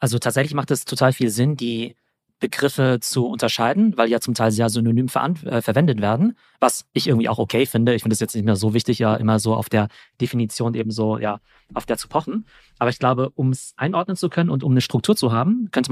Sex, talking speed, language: male, 235 wpm, German